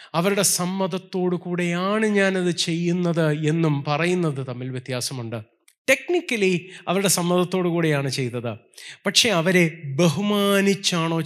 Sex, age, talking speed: male, 20-39, 90 wpm